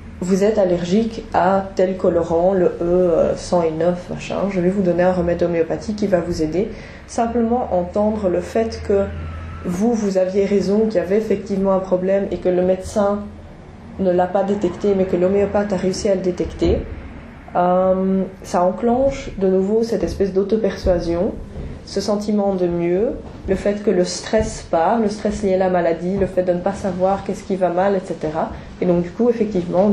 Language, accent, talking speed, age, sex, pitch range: French, French, 185 wpm, 20-39, female, 180-215 Hz